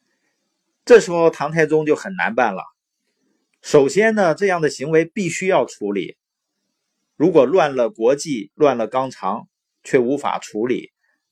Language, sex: Chinese, male